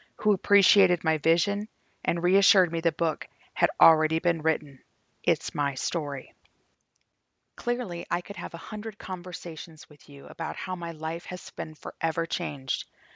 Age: 40-59